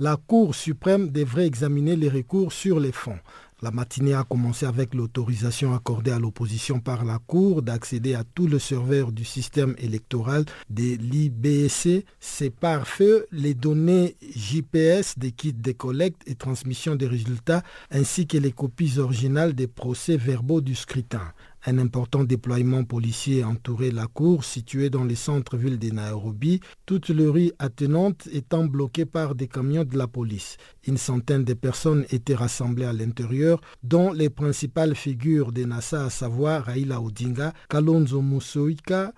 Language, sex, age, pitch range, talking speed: French, male, 50-69, 125-160 Hz, 150 wpm